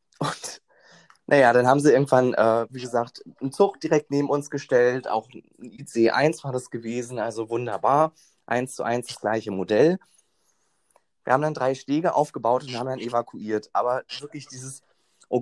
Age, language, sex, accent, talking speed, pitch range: 20-39, German, male, German, 165 wpm, 120-150 Hz